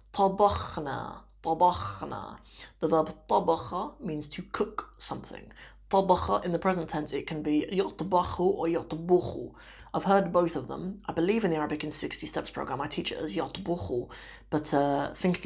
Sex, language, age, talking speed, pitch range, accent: female, English, 30-49, 165 wpm, 150-180 Hz, British